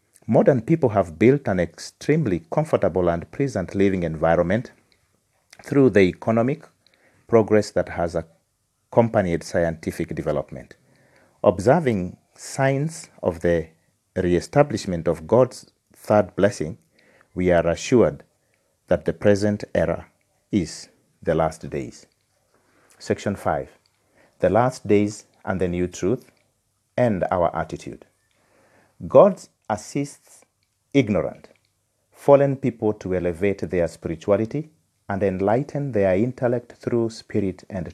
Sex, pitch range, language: male, 90-115 Hz, Japanese